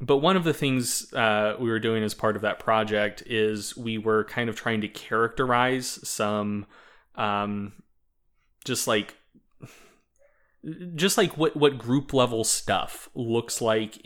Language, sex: English, male